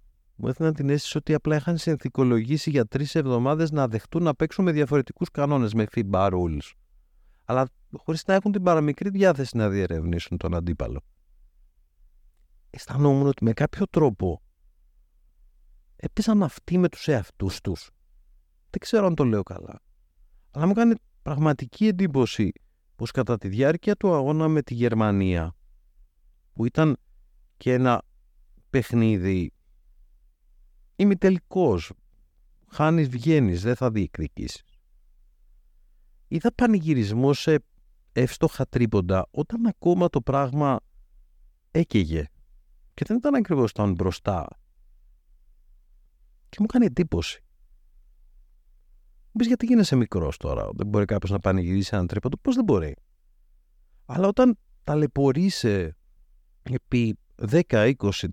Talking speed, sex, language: 120 wpm, male, Greek